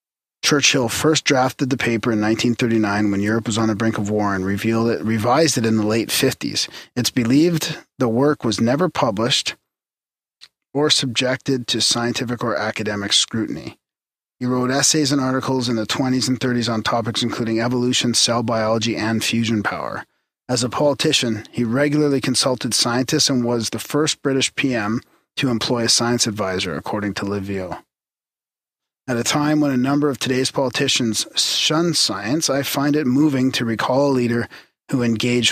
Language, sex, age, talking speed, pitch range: English, male, 40-59, 165 wpm, 115-140 Hz